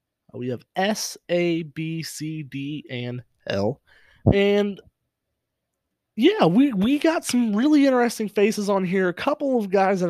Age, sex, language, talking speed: 20-39, male, English, 150 wpm